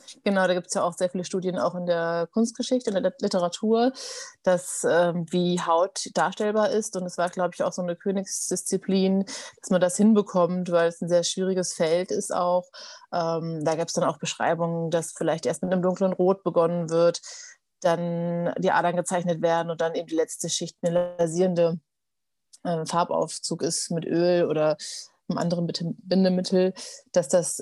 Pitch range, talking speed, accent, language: 165-185 Hz, 180 wpm, German, German